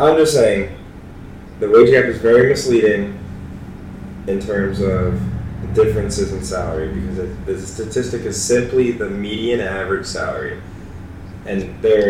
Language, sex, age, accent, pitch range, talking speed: English, male, 20-39, American, 95-145 Hz, 130 wpm